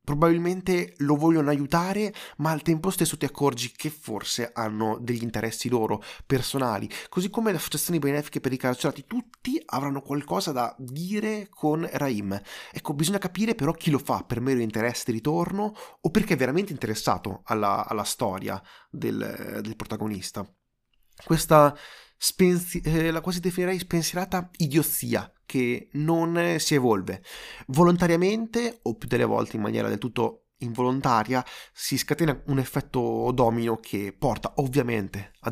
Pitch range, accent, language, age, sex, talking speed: 115-170 Hz, native, Italian, 20-39, male, 145 wpm